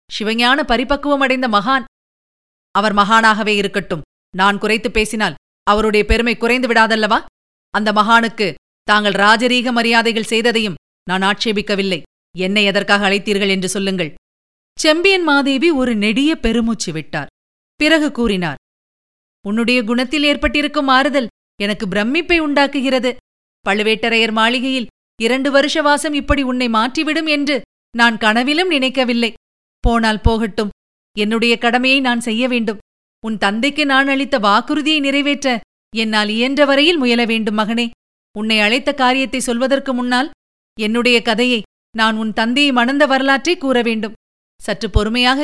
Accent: native